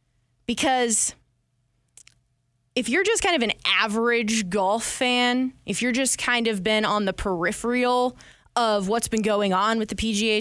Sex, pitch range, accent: female, 180-230 Hz, American